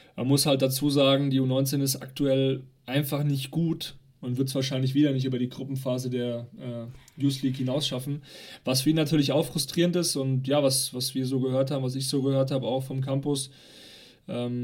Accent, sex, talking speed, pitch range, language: German, male, 210 wpm, 130-145 Hz, German